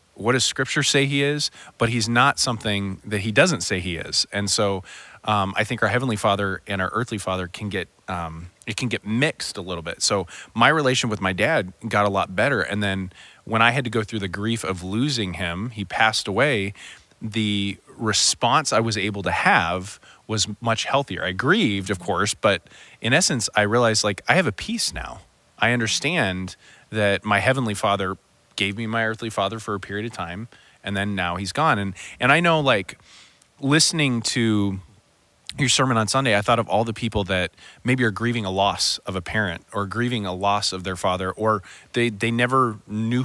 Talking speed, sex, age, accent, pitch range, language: 205 wpm, male, 30-49, American, 100-125 Hz, English